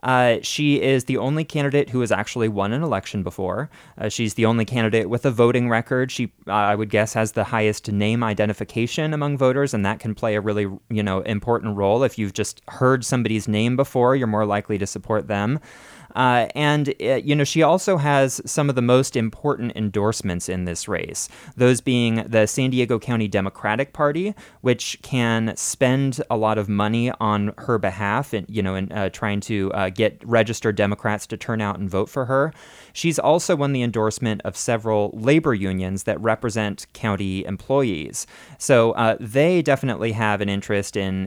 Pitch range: 105-130 Hz